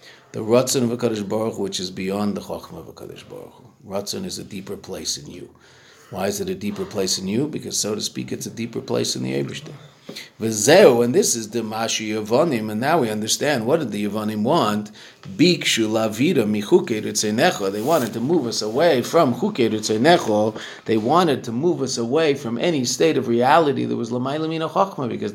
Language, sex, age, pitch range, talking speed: English, male, 50-69, 105-130 Hz, 195 wpm